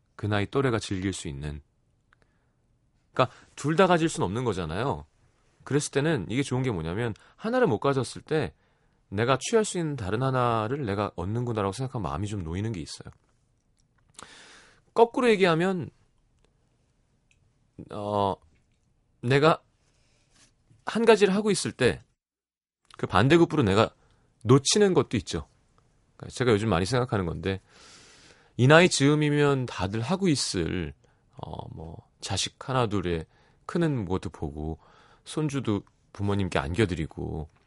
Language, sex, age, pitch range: Korean, male, 30-49, 105-150 Hz